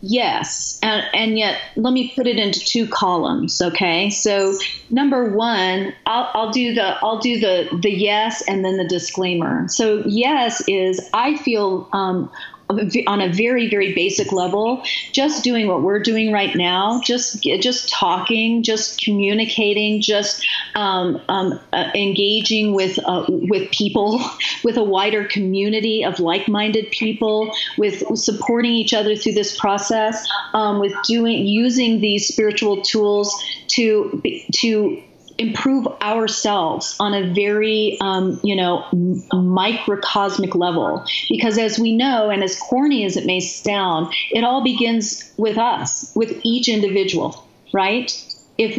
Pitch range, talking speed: 200-235 Hz, 145 wpm